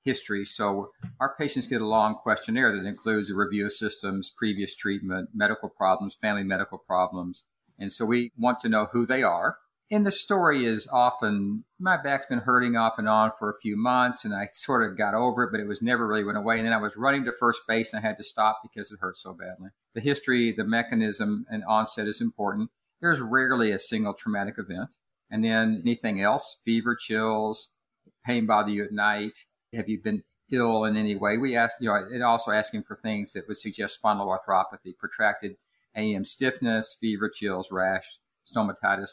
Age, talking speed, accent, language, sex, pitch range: 50-69, 200 wpm, American, English, male, 105-125 Hz